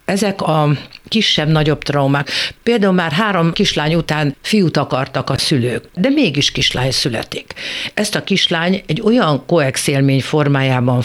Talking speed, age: 130 wpm, 60-79